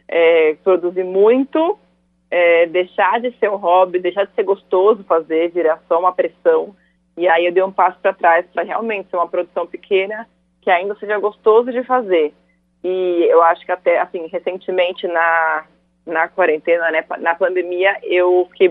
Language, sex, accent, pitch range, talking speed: Portuguese, female, Brazilian, 175-220 Hz, 170 wpm